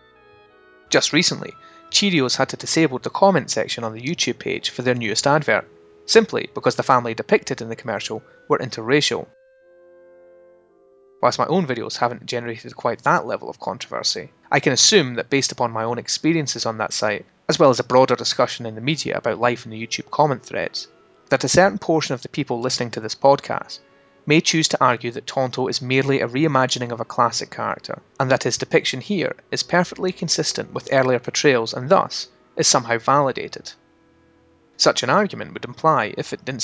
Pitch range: 120-165 Hz